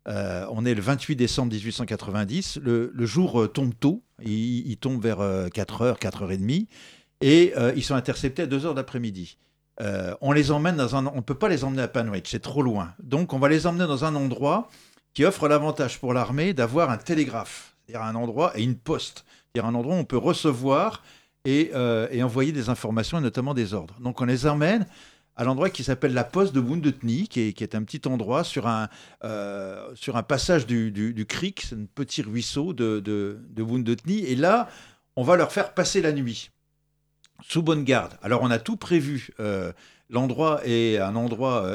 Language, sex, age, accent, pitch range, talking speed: French, male, 50-69, French, 115-150 Hz, 205 wpm